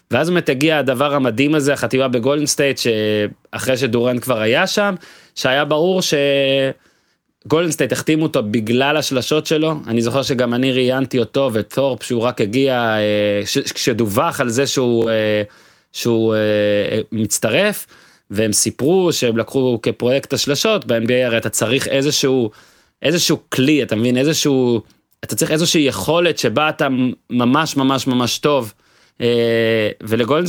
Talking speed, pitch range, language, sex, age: 130 wpm, 115-155 Hz, Hebrew, male, 30-49